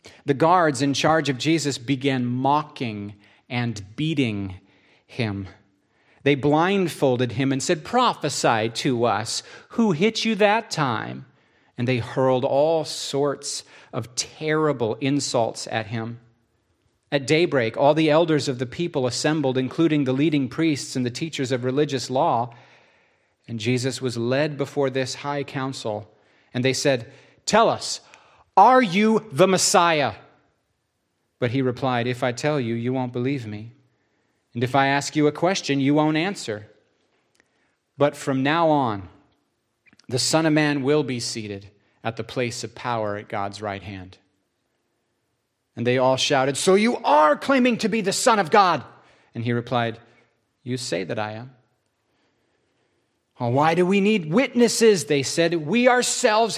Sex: male